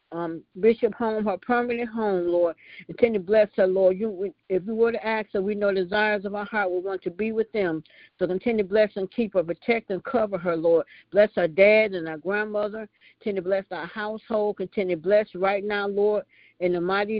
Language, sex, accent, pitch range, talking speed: English, female, American, 185-215 Hz, 225 wpm